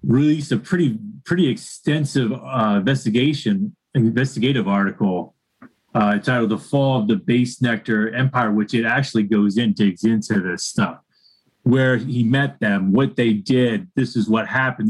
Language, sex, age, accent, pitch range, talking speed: English, male, 30-49, American, 110-145 Hz, 155 wpm